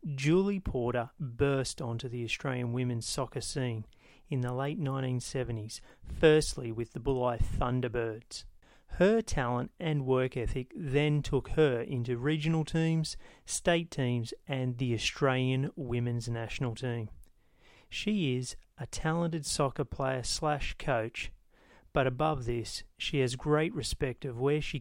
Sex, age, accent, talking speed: male, 30-49, Australian, 135 wpm